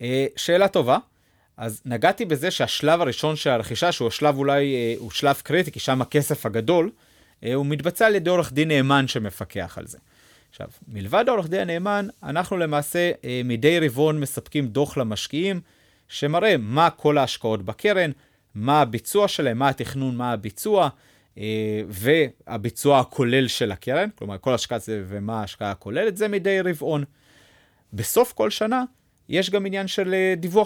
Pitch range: 110-165 Hz